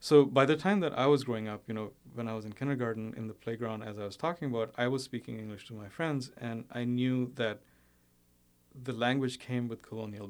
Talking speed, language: 235 wpm, English